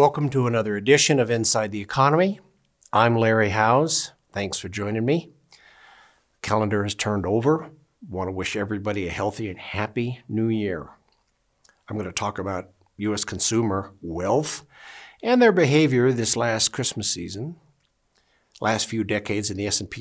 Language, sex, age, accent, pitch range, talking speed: English, male, 60-79, American, 105-130 Hz, 145 wpm